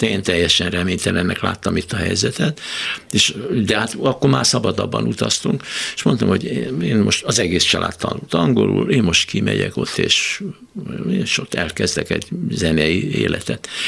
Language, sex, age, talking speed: Hungarian, male, 60-79, 150 wpm